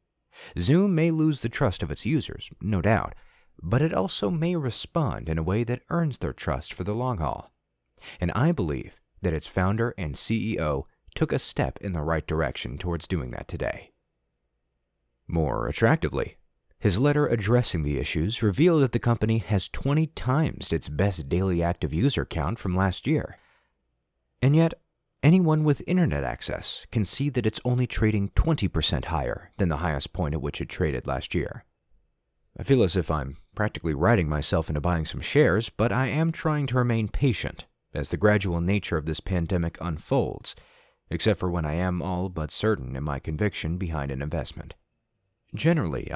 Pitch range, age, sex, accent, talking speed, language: 80-115 Hz, 30-49, male, American, 175 wpm, English